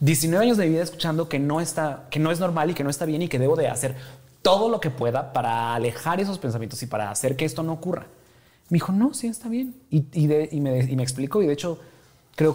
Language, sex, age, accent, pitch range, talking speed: Spanish, male, 30-49, Mexican, 120-155 Hz, 245 wpm